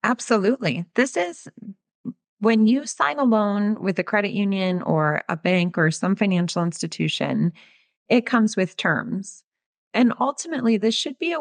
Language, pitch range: English, 170-220 Hz